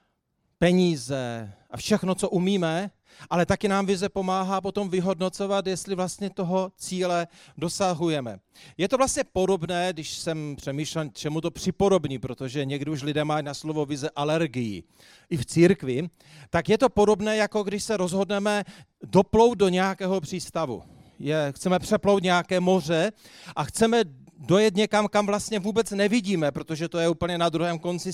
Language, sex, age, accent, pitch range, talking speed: Czech, male, 40-59, native, 155-195 Hz, 150 wpm